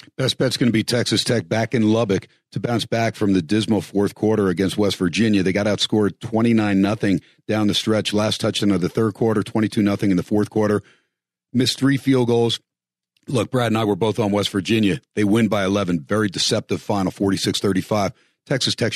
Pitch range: 105-120 Hz